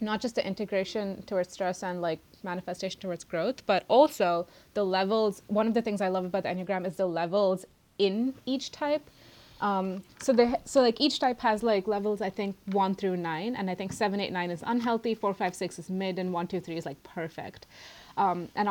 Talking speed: 215 wpm